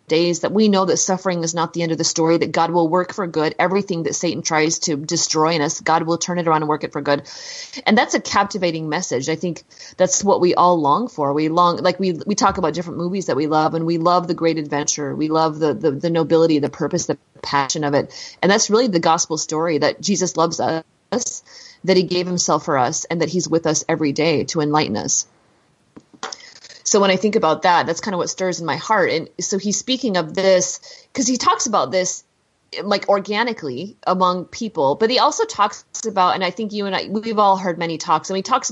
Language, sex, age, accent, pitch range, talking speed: English, female, 30-49, American, 160-205 Hz, 240 wpm